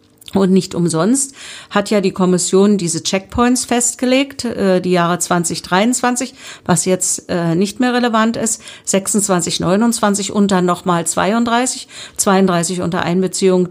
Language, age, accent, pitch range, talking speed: German, 50-69, German, 175-230 Hz, 125 wpm